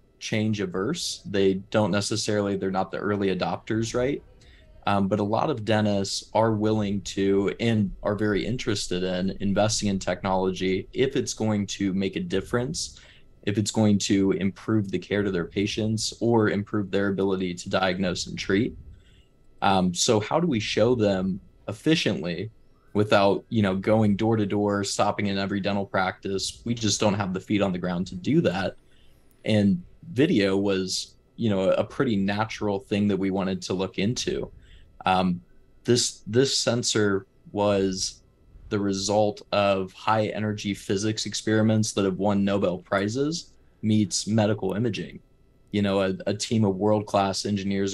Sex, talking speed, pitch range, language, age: male, 160 wpm, 95-110 Hz, English, 20-39